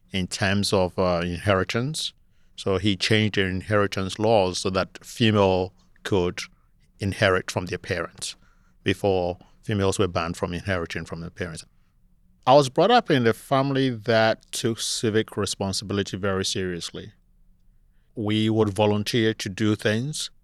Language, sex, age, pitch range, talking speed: English, male, 50-69, 95-110 Hz, 140 wpm